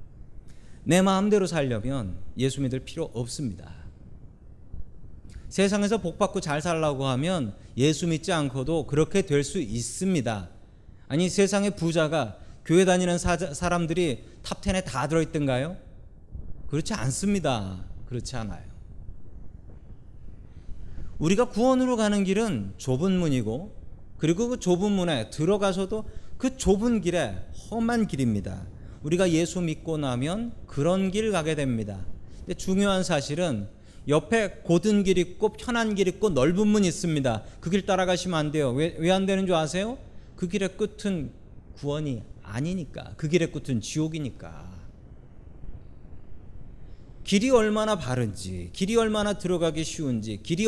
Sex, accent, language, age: male, native, Korean, 40-59